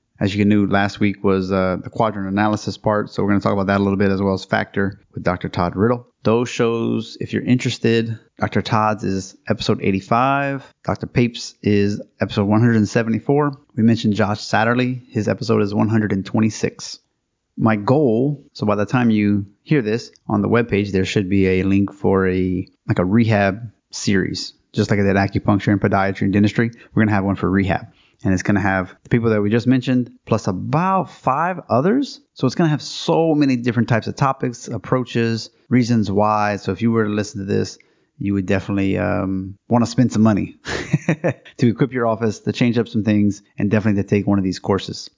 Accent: American